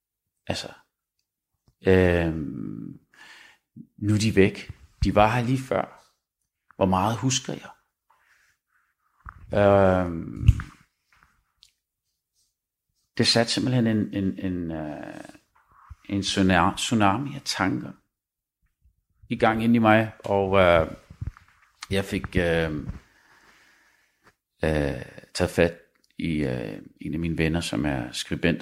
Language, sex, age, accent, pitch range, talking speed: Danish, male, 40-59, native, 85-115 Hz, 105 wpm